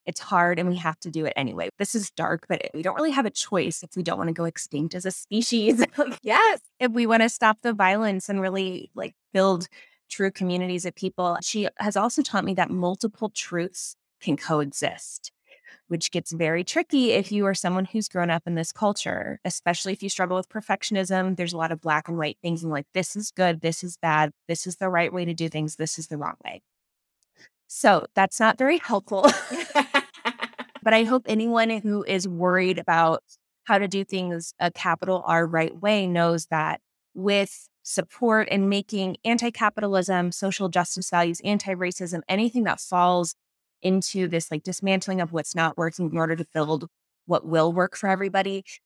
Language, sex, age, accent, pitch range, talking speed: English, female, 20-39, American, 170-205 Hz, 195 wpm